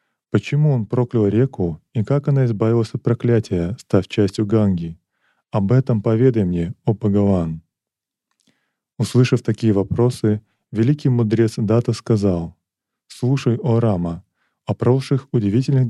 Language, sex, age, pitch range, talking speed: Russian, male, 20-39, 100-125 Hz, 120 wpm